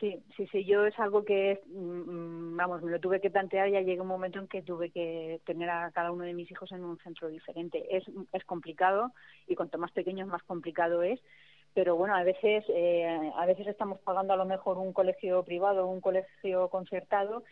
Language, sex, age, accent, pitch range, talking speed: Spanish, female, 30-49, Spanish, 175-195 Hz, 210 wpm